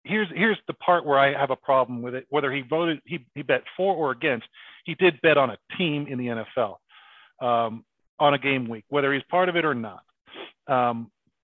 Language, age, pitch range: English, 40-59, 120-160 Hz